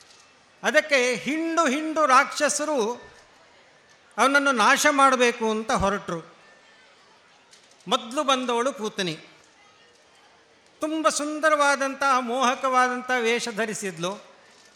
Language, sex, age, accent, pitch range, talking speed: Kannada, male, 50-69, native, 220-280 Hz, 70 wpm